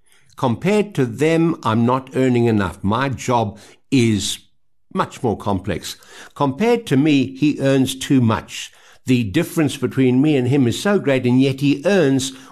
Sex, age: male, 60-79